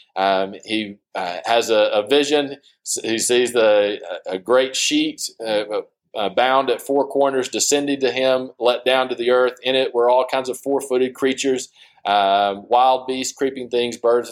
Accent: American